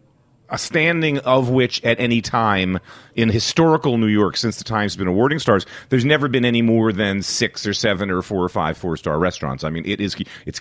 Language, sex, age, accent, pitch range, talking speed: English, male, 40-59, American, 100-140 Hz, 210 wpm